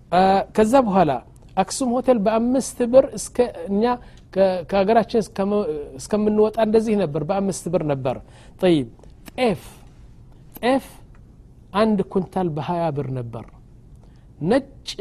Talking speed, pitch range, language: 140 wpm, 150-190 Hz, Amharic